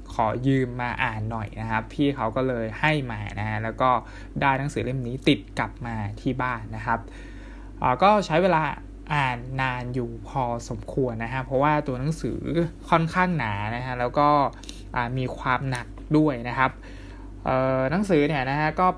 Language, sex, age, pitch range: Thai, male, 20-39, 115-145 Hz